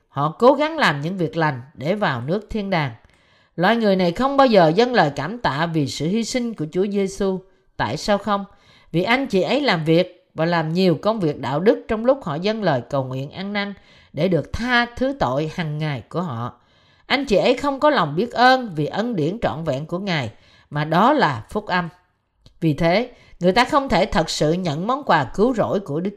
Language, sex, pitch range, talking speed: Vietnamese, female, 155-230 Hz, 225 wpm